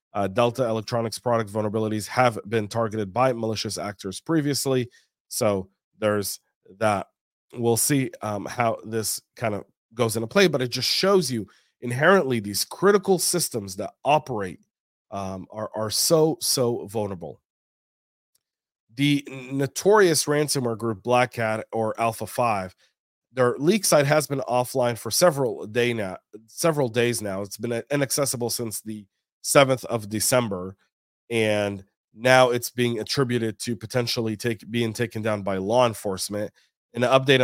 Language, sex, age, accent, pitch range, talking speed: English, male, 30-49, American, 110-130 Hz, 145 wpm